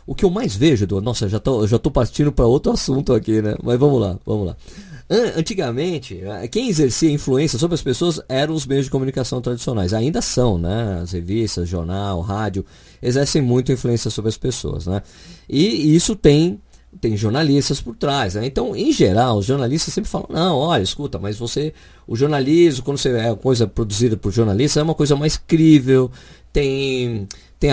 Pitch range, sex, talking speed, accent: 105-155 Hz, male, 185 wpm, Brazilian